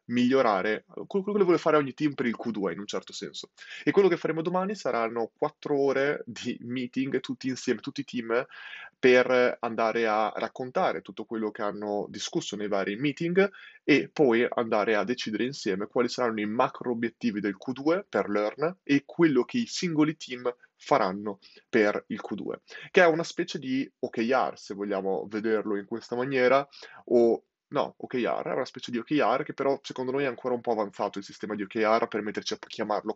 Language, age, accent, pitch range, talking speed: Italian, 20-39, native, 115-155 Hz, 185 wpm